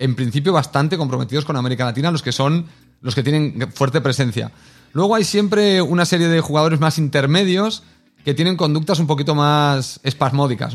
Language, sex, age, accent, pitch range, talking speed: English, male, 30-49, Spanish, 135-165 Hz, 175 wpm